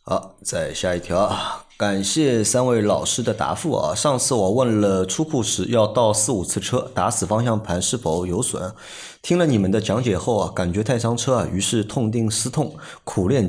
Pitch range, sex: 95-125 Hz, male